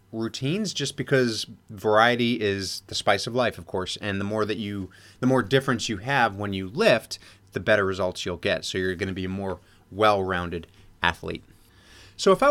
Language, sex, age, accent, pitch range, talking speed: English, male, 30-49, American, 95-125 Hz, 200 wpm